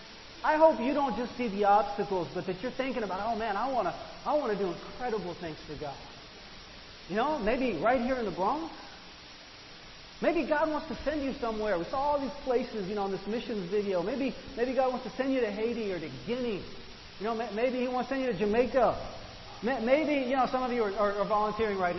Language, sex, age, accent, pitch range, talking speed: English, male, 40-59, American, 185-255 Hz, 230 wpm